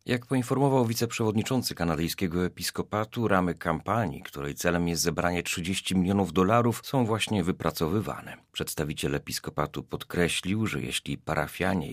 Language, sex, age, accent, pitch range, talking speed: Polish, male, 40-59, native, 85-105 Hz, 115 wpm